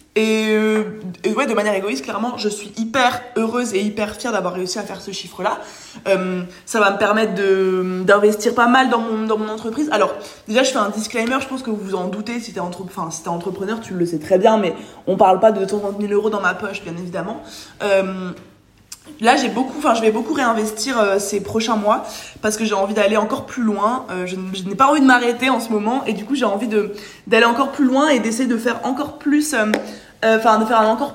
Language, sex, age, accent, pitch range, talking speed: French, female, 20-39, French, 200-245 Hz, 245 wpm